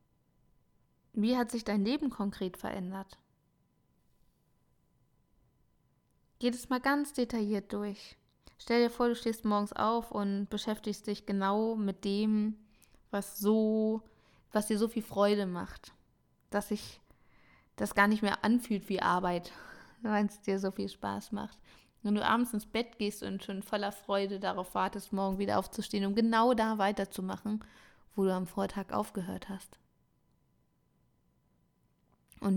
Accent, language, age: German, German, 20-39